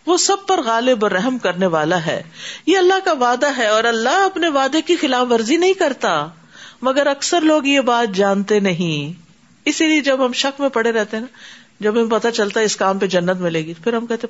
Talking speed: 215 wpm